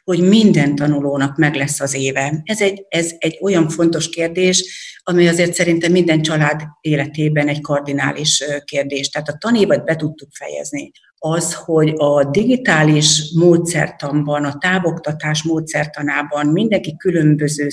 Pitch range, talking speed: 150-170 Hz, 130 wpm